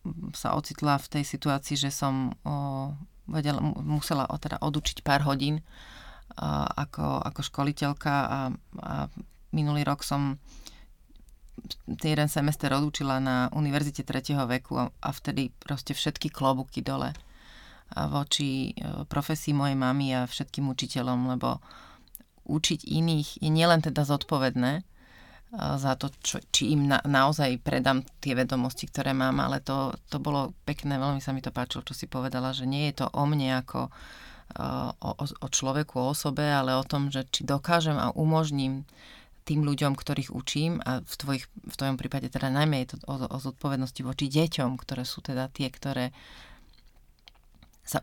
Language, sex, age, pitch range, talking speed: Slovak, female, 30-49, 130-150 Hz, 150 wpm